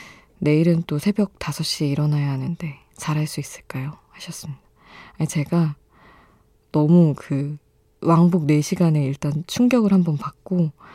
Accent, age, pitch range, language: native, 20-39, 145-180 Hz, Korean